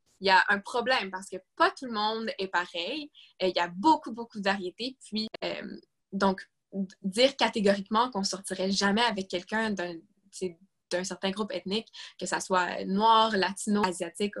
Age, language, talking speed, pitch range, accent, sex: 20-39, French, 175 wpm, 185-220 Hz, Canadian, female